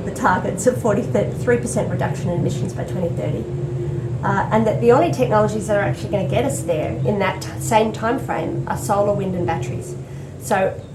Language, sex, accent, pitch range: English, female, Australian, 160-210 Hz